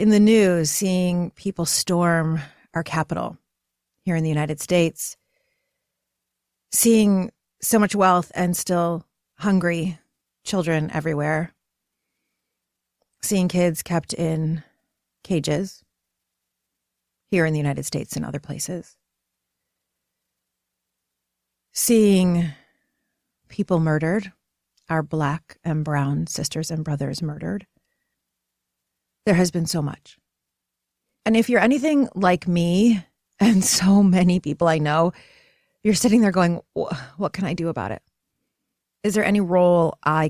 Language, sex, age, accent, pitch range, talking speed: English, female, 30-49, American, 155-195 Hz, 115 wpm